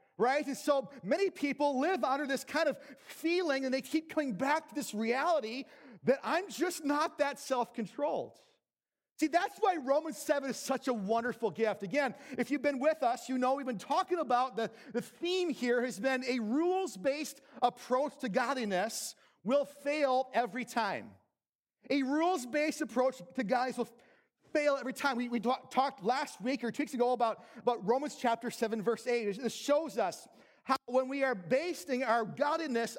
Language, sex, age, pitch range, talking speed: English, male, 40-59, 245-300 Hz, 180 wpm